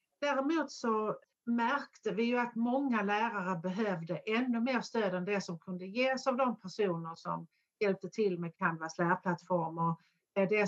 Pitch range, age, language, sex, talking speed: 185-235 Hz, 60-79, Swedish, female, 155 wpm